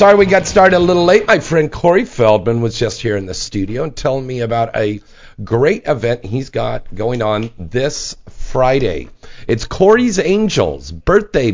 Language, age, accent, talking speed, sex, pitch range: English, 50-69, American, 175 wpm, male, 105-150 Hz